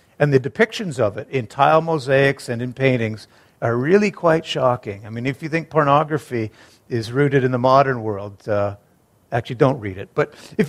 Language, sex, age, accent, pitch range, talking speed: English, male, 50-69, American, 130-185 Hz, 190 wpm